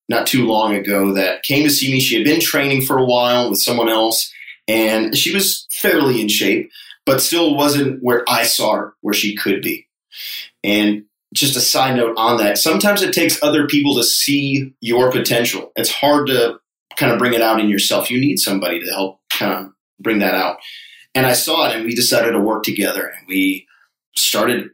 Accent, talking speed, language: American, 205 wpm, English